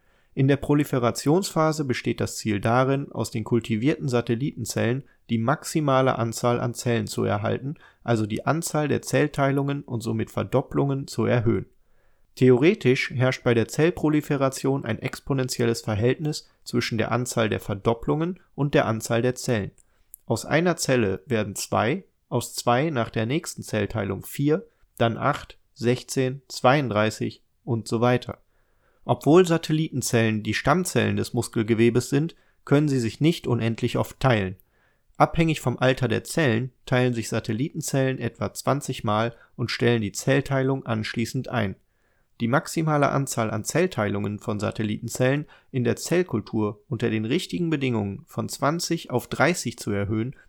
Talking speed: 140 wpm